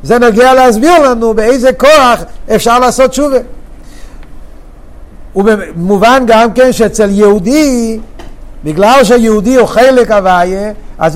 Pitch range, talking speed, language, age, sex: 205-250 Hz, 110 wpm, Hebrew, 50-69, male